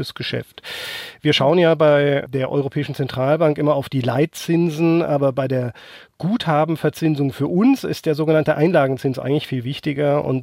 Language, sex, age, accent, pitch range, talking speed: German, male, 40-59, German, 135-160 Hz, 150 wpm